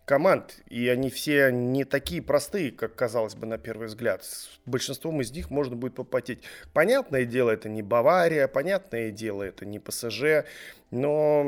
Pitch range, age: 115-140 Hz, 20-39